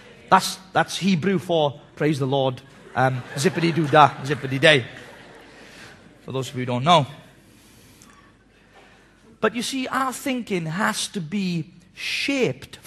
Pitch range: 150-230 Hz